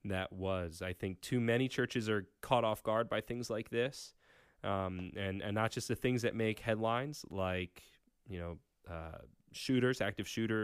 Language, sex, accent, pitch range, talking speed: English, male, American, 100-125 Hz, 180 wpm